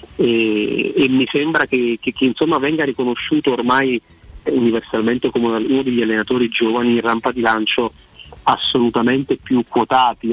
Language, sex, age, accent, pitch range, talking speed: Italian, male, 30-49, native, 110-125 Hz, 140 wpm